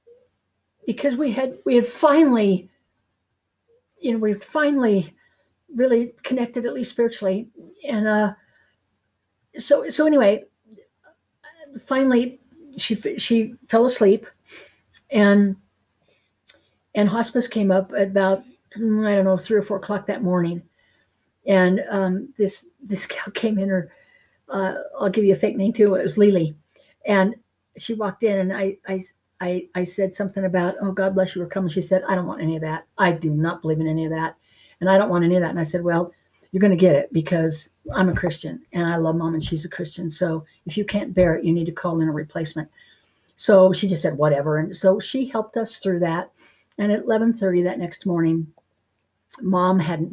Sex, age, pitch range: female, 60-79, 170-215 Hz